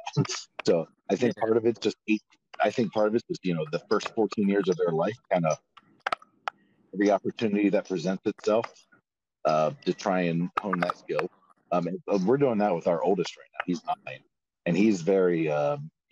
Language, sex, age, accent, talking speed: English, male, 40-59, American, 190 wpm